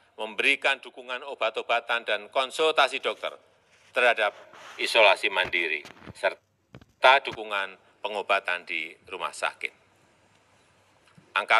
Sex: male